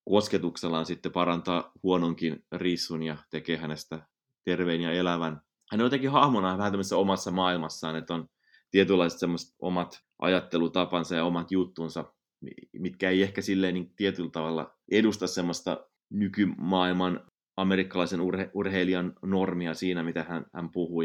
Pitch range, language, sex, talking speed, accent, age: 80-95 Hz, Finnish, male, 130 wpm, native, 30-49